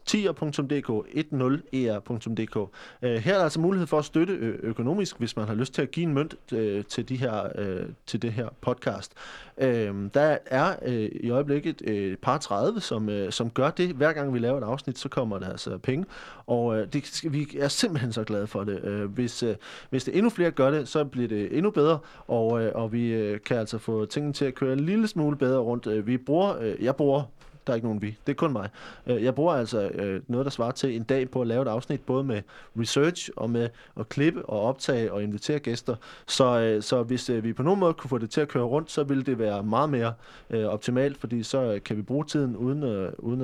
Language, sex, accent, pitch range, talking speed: Danish, male, native, 115-145 Hz, 235 wpm